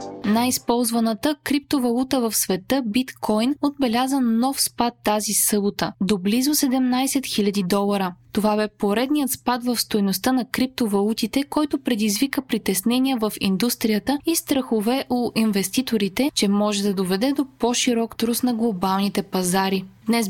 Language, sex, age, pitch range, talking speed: Bulgarian, female, 20-39, 205-260 Hz, 130 wpm